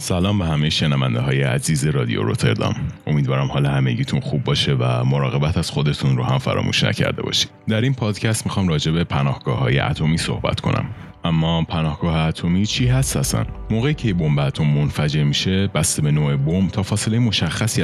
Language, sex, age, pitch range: Persian, male, 30-49, 75-95 Hz